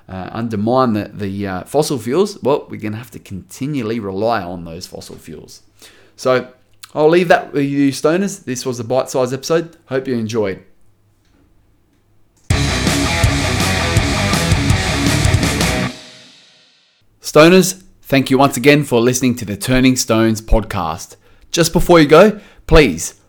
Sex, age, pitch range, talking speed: male, 20-39, 100-140 Hz, 130 wpm